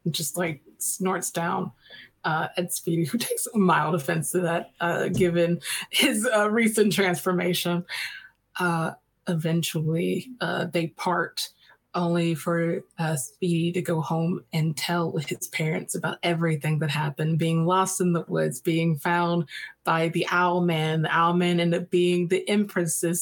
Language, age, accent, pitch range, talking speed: English, 20-39, American, 165-185 Hz, 150 wpm